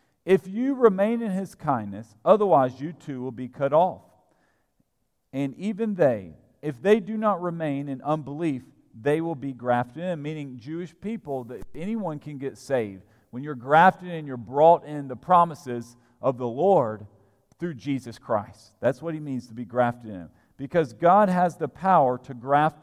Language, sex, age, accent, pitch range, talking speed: English, male, 50-69, American, 120-175 Hz, 175 wpm